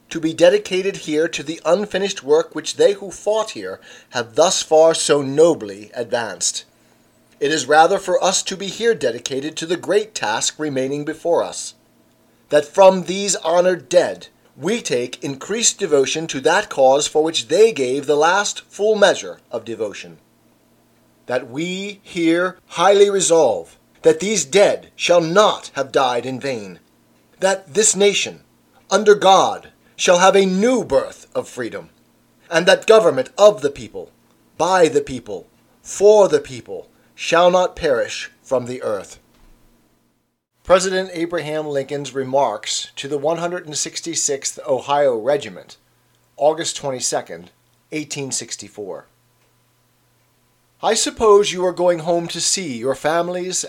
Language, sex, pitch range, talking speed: English, male, 140-195 Hz, 135 wpm